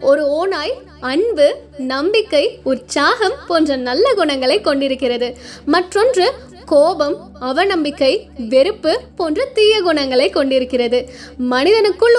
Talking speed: 95 wpm